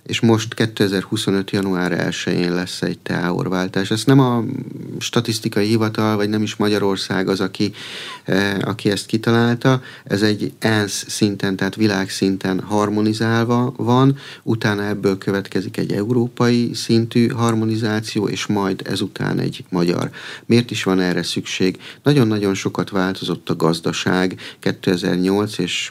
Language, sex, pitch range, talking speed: Hungarian, male, 95-110 Hz, 130 wpm